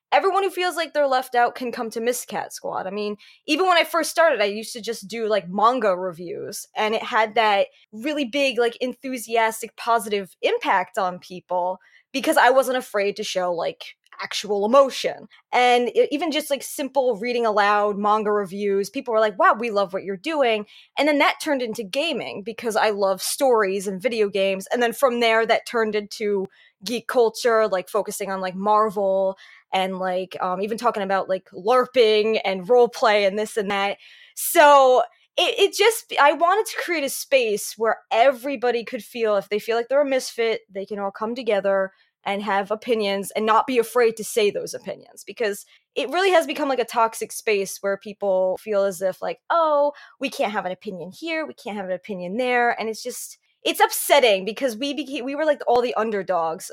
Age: 20-39